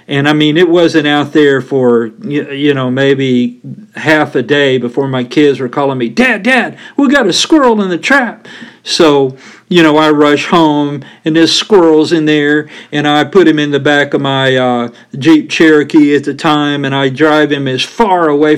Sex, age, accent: male, 50-69, American